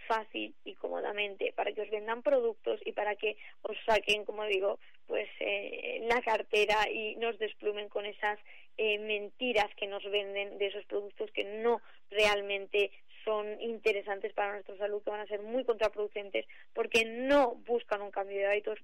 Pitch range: 210-270 Hz